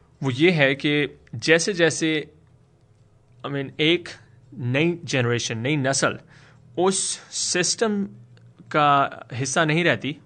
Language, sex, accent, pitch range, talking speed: English, male, Indian, 125-160 Hz, 100 wpm